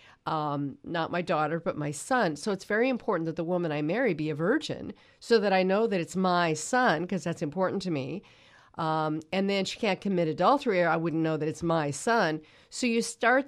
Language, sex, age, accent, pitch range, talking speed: English, female, 40-59, American, 155-195 Hz, 225 wpm